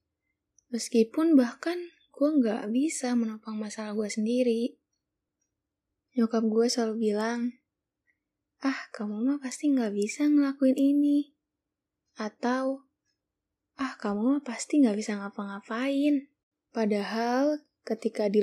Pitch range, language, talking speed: 210-255 Hz, Indonesian, 105 wpm